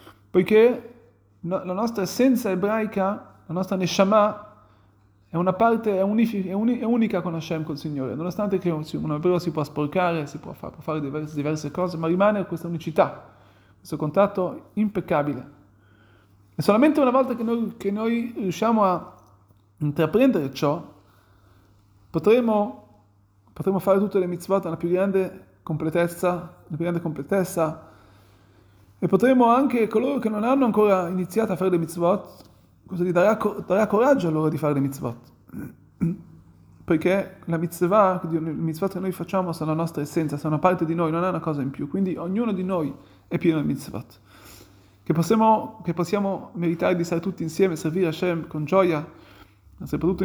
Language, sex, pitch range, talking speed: Italian, male, 135-195 Hz, 160 wpm